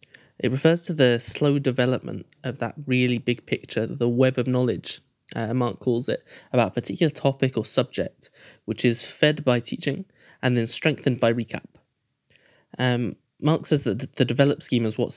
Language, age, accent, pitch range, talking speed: English, 10-29, British, 120-135 Hz, 175 wpm